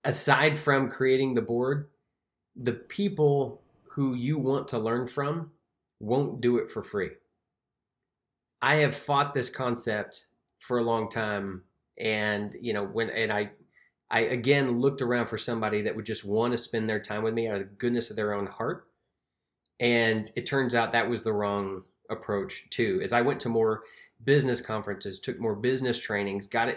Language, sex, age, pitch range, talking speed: English, male, 20-39, 110-135 Hz, 175 wpm